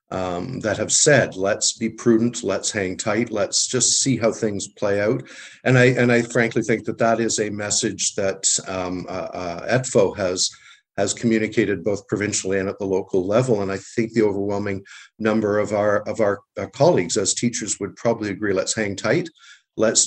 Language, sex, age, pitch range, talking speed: English, male, 50-69, 100-125 Hz, 190 wpm